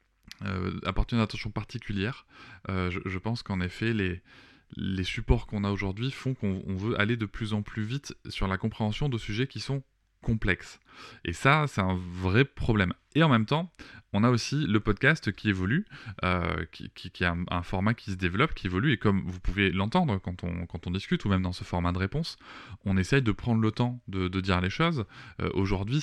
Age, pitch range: 20-39, 95-120 Hz